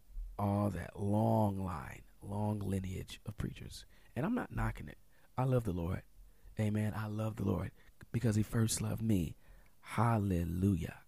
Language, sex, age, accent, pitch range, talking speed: English, male, 40-59, American, 90-110 Hz, 150 wpm